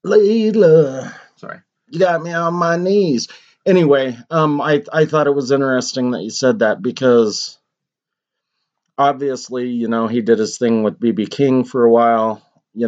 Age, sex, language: 30-49, male, English